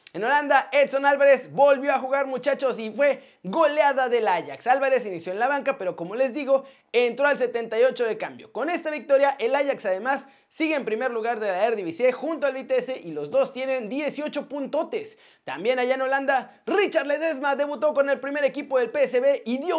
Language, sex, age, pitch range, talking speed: Spanish, male, 30-49, 235-285 Hz, 195 wpm